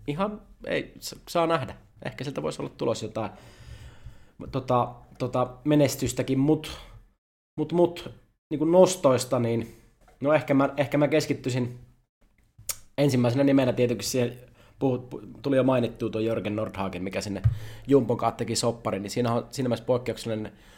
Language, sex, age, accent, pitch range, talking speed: Finnish, male, 20-39, native, 110-140 Hz, 140 wpm